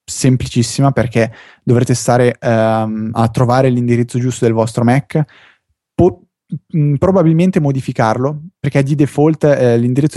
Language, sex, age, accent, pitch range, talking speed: Italian, male, 20-39, native, 115-135 Hz, 125 wpm